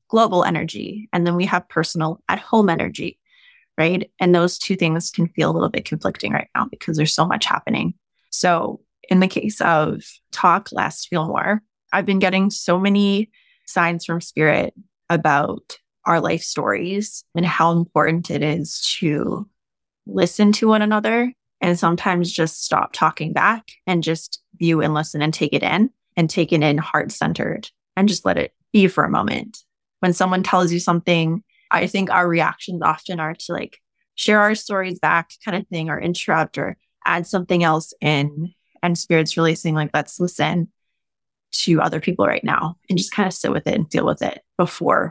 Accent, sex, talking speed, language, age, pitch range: American, female, 185 wpm, English, 20-39, 165-200 Hz